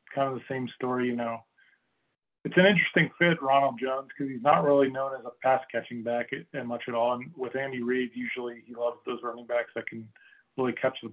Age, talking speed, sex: 20-39, 225 wpm, male